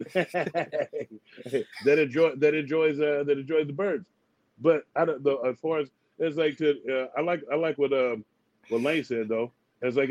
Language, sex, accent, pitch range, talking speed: English, male, American, 130-155 Hz, 190 wpm